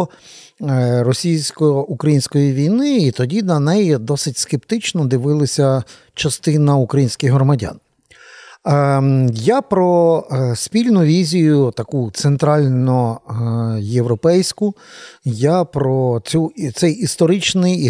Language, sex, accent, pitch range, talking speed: Ukrainian, male, native, 135-175 Hz, 75 wpm